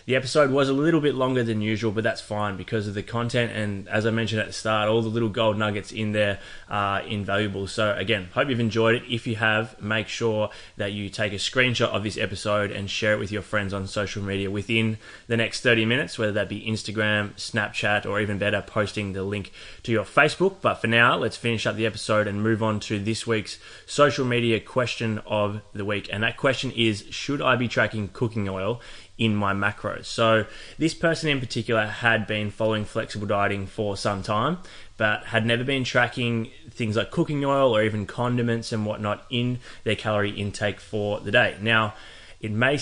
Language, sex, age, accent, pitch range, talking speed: English, male, 20-39, Australian, 105-115 Hz, 210 wpm